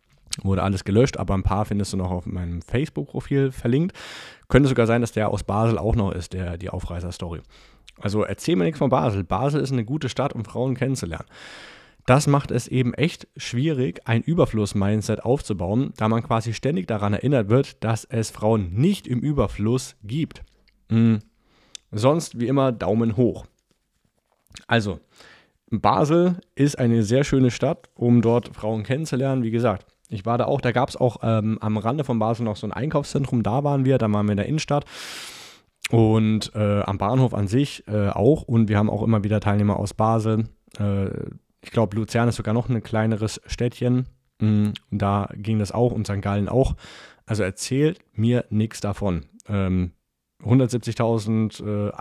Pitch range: 105-130 Hz